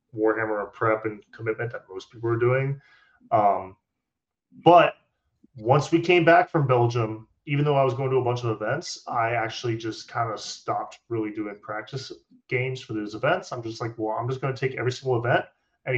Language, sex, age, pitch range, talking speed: English, male, 30-49, 110-130 Hz, 205 wpm